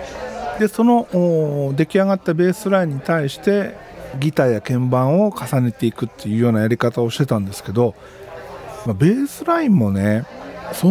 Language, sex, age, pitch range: Japanese, male, 50-69, 120-200 Hz